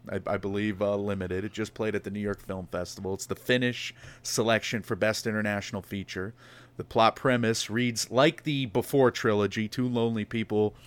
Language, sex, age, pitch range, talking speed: English, male, 30-49, 105-125 Hz, 180 wpm